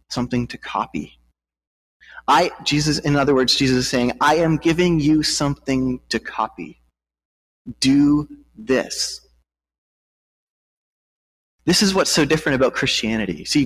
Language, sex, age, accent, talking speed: English, male, 30-49, American, 125 wpm